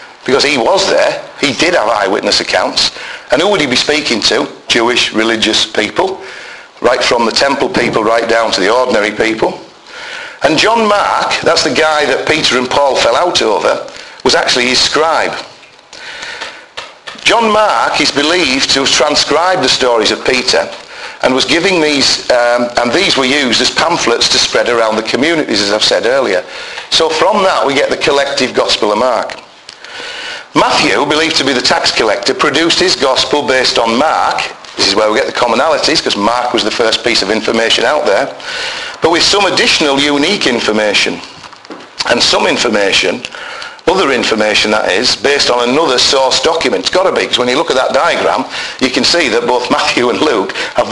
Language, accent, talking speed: English, British, 185 wpm